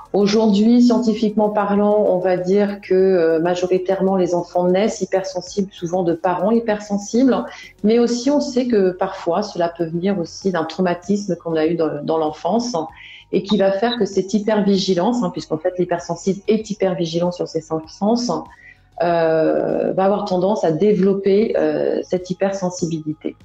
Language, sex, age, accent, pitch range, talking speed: French, female, 30-49, French, 165-205 Hz, 150 wpm